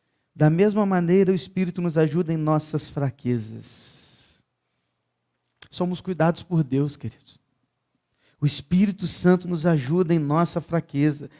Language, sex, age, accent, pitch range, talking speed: Portuguese, male, 40-59, Brazilian, 160-215 Hz, 120 wpm